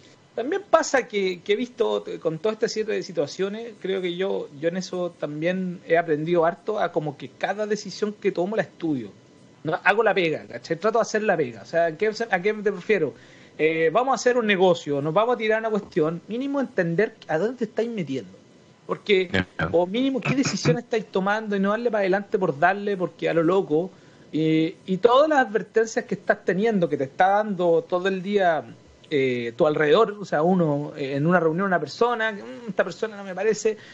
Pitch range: 165-220 Hz